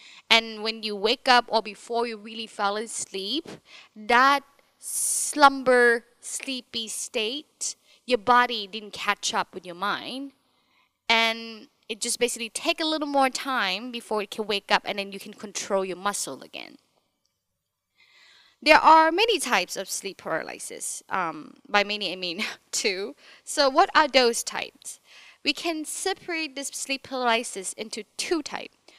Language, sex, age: Thai, female, 20-39